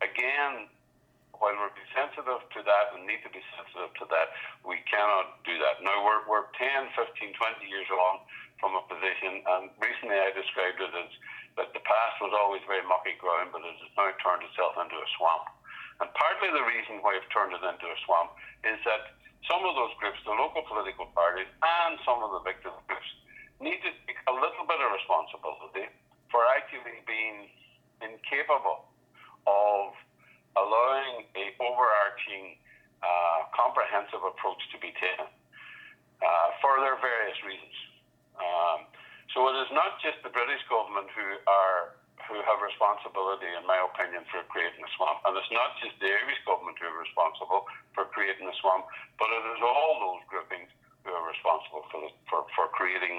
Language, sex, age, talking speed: English, male, 60-79, 175 wpm